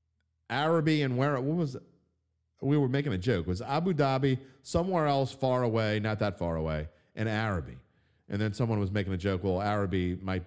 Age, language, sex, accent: 40-59, English, male, American